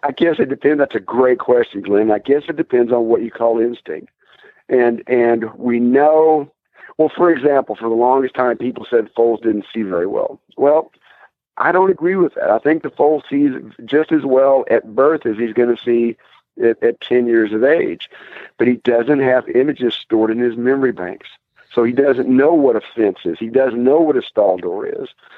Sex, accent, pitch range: male, American, 115-145 Hz